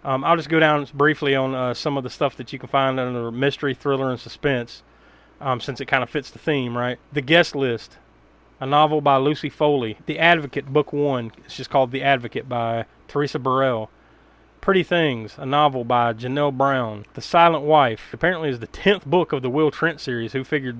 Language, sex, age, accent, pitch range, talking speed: English, male, 30-49, American, 130-160 Hz, 210 wpm